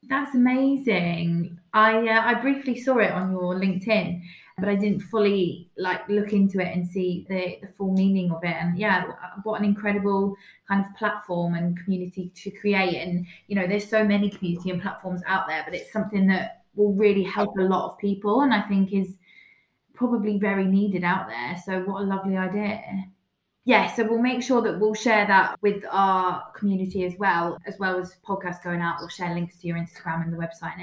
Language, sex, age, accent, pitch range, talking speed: English, female, 20-39, British, 180-220 Hz, 205 wpm